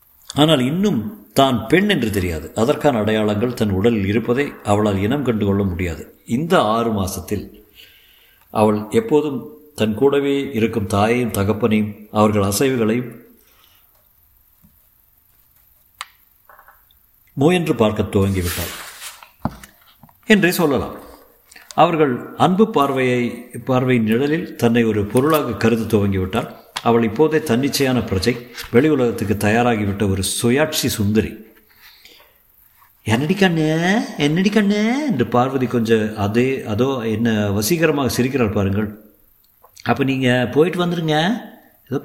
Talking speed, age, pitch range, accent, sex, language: 90 wpm, 50-69, 105-145 Hz, native, male, Tamil